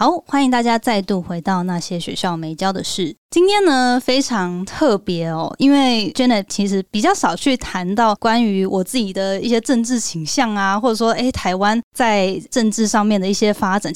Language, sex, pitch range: Chinese, female, 195-245 Hz